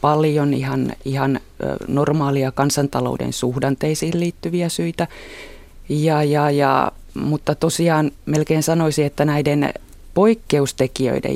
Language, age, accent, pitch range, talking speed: Finnish, 30-49, native, 130-150 Hz, 80 wpm